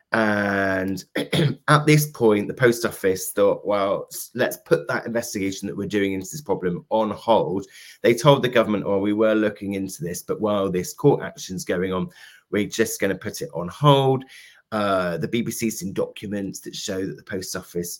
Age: 30-49